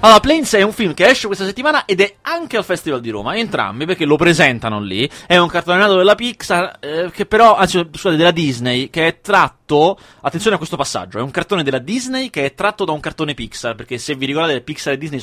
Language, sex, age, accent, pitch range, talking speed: Italian, male, 30-49, native, 125-175 Hz, 235 wpm